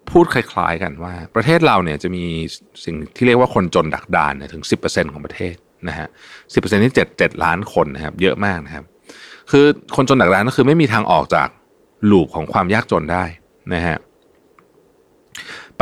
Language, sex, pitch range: Thai, male, 85-125 Hz